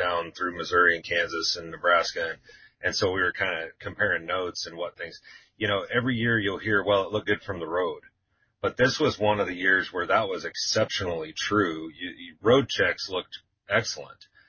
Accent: American